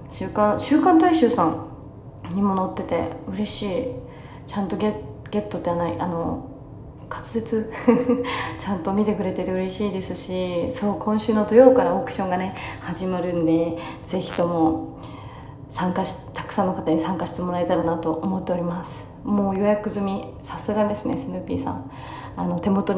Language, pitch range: Japanese, 180-240 Hz